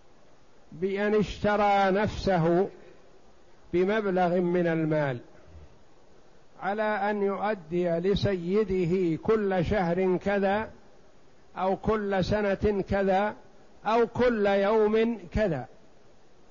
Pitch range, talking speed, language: 180-215 Hz, 75 wpm, Arabic